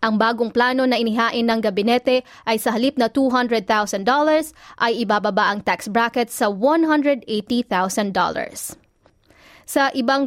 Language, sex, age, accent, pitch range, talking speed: Filipino, female, 20-39, native, 225-265 Hz, 115 wpm